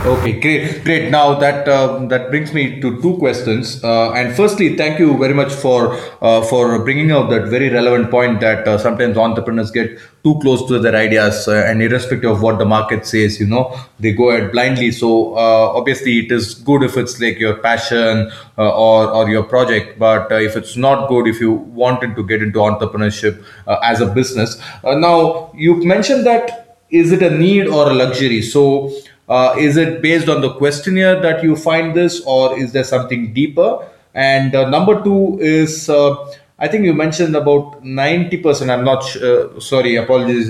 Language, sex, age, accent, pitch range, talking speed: English, male, 20-39, Indian, 115-145 Hz, 195 wpm